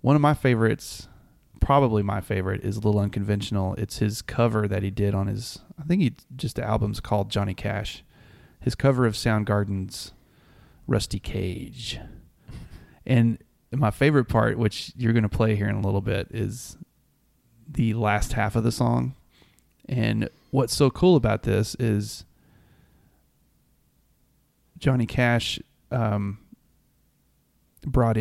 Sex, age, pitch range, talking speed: male, 30-49, 100-120 Hz, 140 wpm